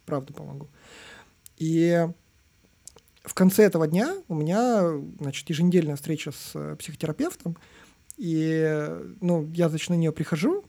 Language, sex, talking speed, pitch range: Russian, male, 120 wpm, 160-205 Hz